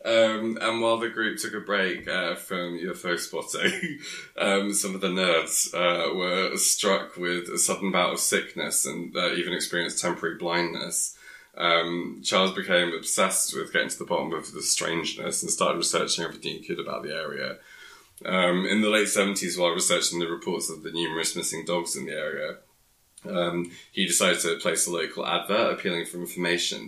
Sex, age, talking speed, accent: male, 20-39, 180 wpm, British